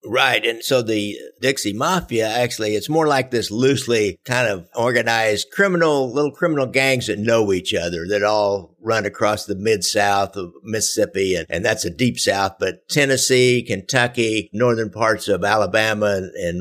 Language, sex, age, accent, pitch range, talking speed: English, male, 60-79, American, 105-140 Hz, 165 wpm